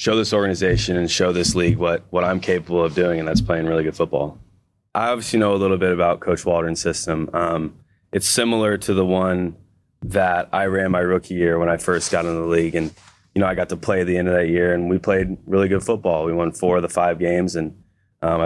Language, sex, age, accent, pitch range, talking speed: English, male, 20-39, American, 85-100 Hz, 245 wpm